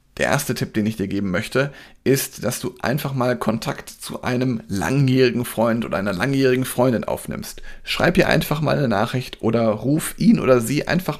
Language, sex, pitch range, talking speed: German, male, 110-135 Hz, 190 wpm